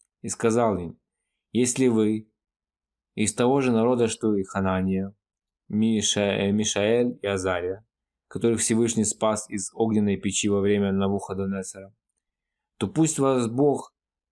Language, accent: Russian, native